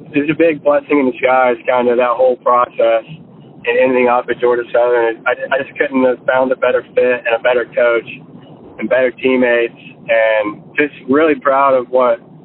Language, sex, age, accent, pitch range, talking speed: English, male, 20-39, American, 120-145 Hz, 185 wpm